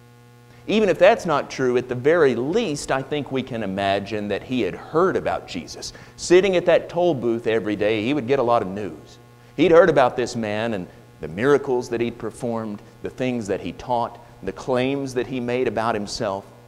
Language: English